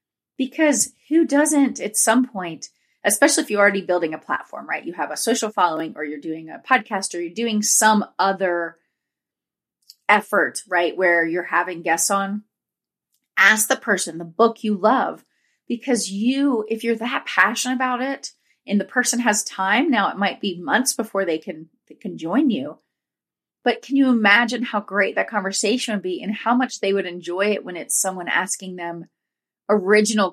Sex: female